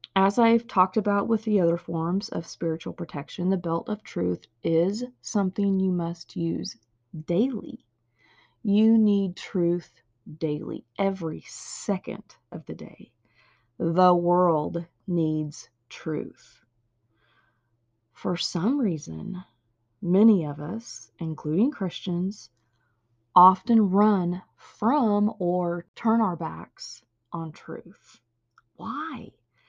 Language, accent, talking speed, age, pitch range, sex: English, American, 105 wpm, 30-49, 150-220 Hz, female